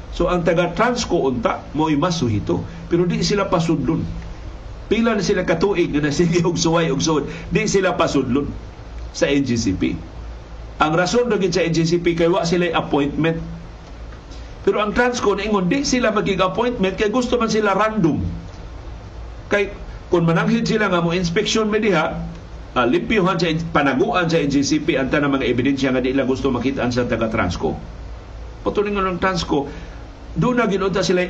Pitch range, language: 135-190 Hz, Filipino